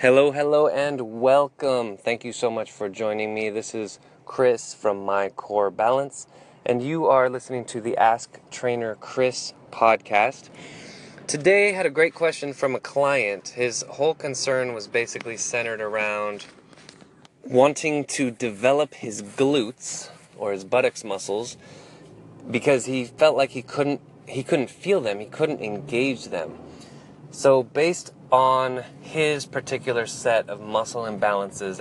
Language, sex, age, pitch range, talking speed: English, male, 20-39, 115-145 Hz, 145 wpm